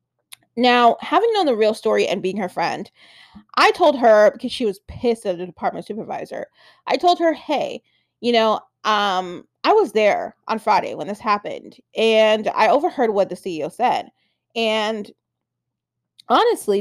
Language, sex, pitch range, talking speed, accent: English, female, 215-285 Hz, 160 wpm, American